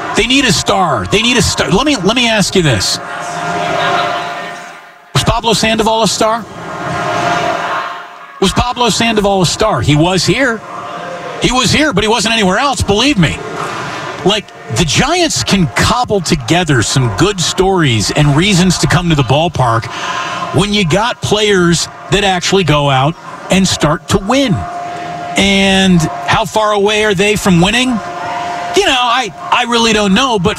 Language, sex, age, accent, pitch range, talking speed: English, male, 50-69, American, 165-225 Hz, 160 wpm